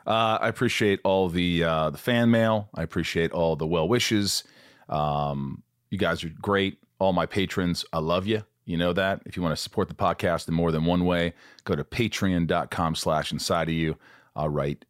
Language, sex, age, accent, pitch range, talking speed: English, male, 40-59, American, 75-95 Hz, 200 wpm